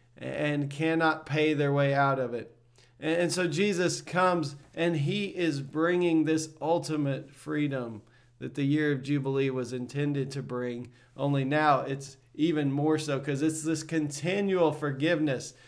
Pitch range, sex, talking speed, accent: 135-170 Hz, male, 150 wpm, American